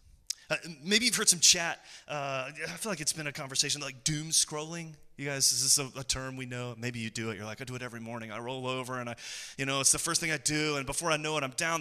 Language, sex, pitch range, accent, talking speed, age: English, male, 130-180 Hz, American, 285 wpm, 30-49